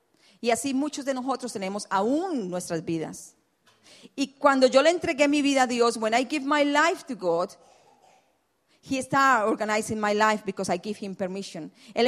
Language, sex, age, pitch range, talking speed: English, female, 40-59, 210-280 Hz, 180 wpm